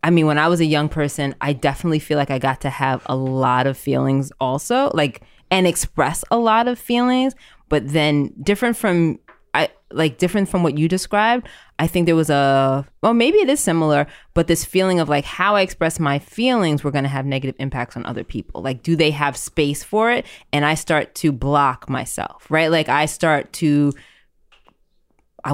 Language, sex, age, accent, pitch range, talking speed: English, female, 20-39, American, 135-165 Hz, 205 wpm